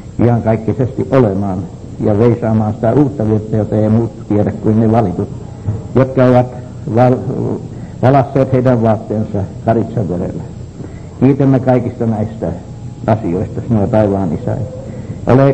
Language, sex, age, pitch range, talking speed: English, male, 60-79, 105-125 Hz, 110 wpm